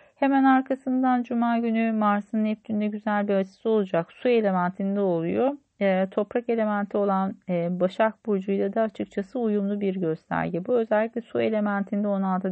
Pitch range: 180-215 Hz